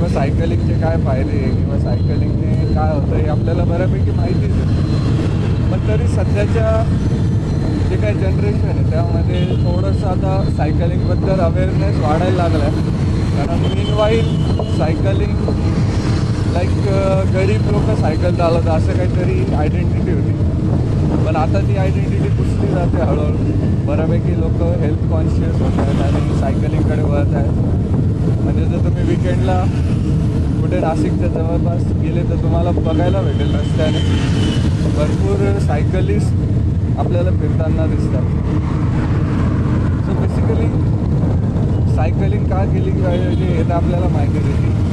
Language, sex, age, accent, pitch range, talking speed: Marathi, male, 20-39, native, 90-110 Hz, 115 wpm